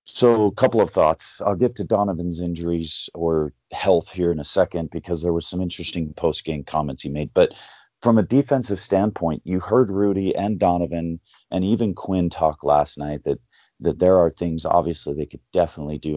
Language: English